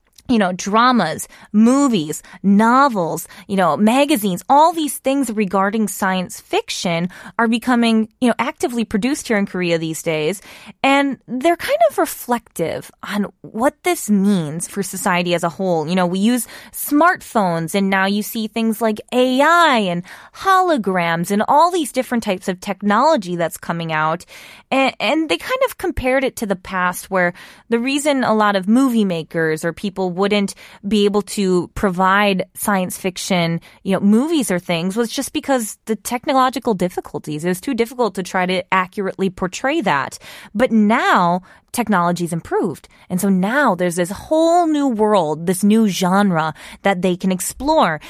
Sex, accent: female, American